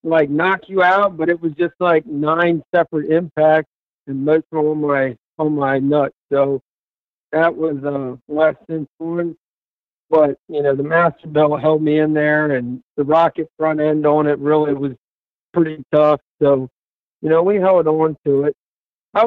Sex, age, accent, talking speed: male, 50-69, American, 180 wpm